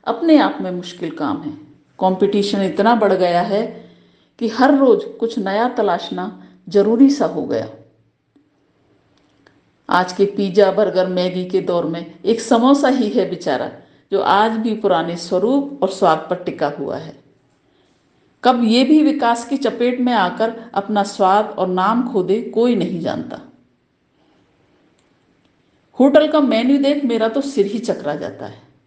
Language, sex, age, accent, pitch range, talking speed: English, female, 50-69, Indian, 180-235 Hz, 125 wpm